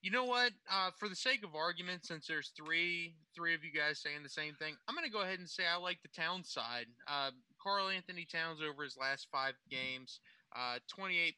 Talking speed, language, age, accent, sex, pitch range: 225 wpm, English, 20-39, American, male, 130-170 Hz